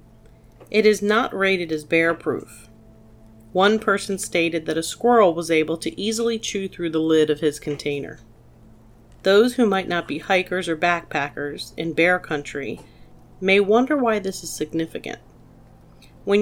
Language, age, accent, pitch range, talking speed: English, 40-59, American, 155-205 Hz, 150 wpm